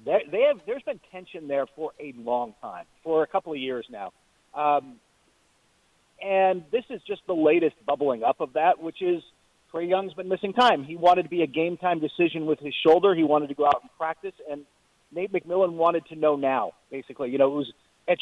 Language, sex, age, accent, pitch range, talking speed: English, male, 40-59, American, 150-195 Hz, 210 wpm